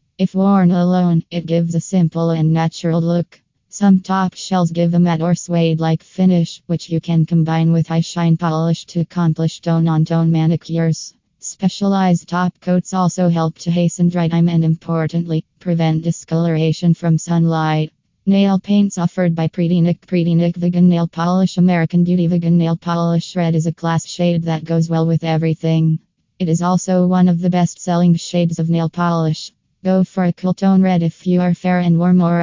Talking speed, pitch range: 175 wpm, 165-180 Hz